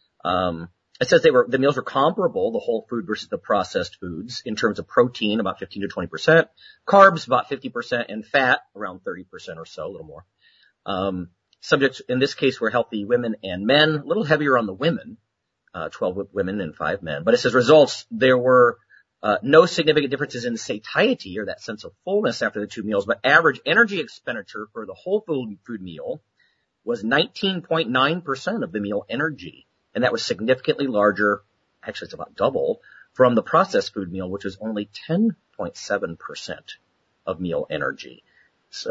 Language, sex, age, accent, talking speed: English, male, 40-59, American, 180 wpm